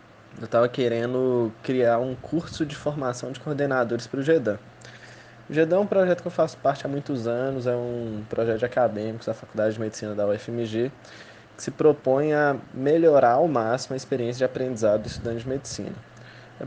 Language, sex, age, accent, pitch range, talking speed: Portuguese, male, 20-39, Brazilian, 115-135 Hz, 180 wpm